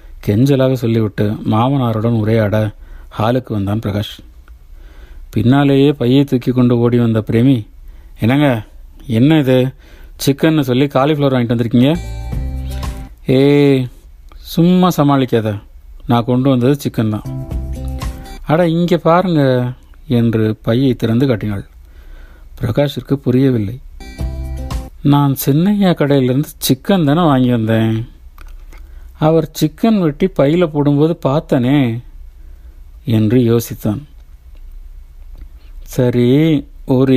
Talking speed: 90 wpm